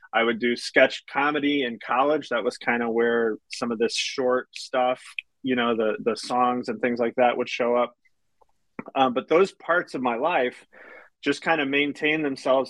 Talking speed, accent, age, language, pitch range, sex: 195 wpm, American, 30-49, English, 120-135 Hz, male